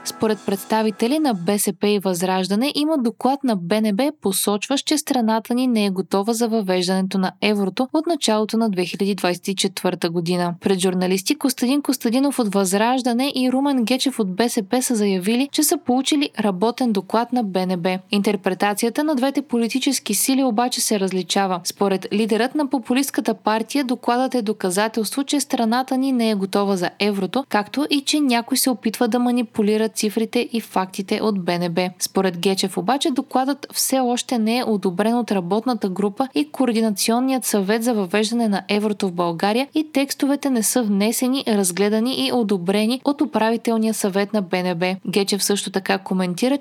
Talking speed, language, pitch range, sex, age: 155 wpm, Bulgarian, 200-255 Hz, female, 20-39